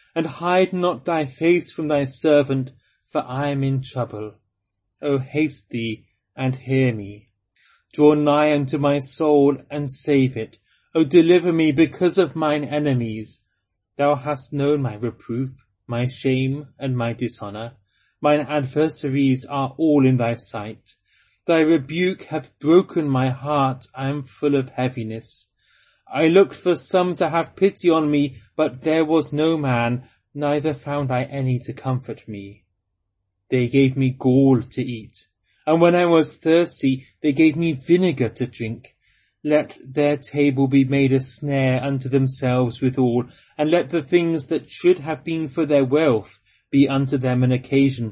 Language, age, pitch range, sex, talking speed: English, 30-49, 120-150 Hz, male, 155 wpm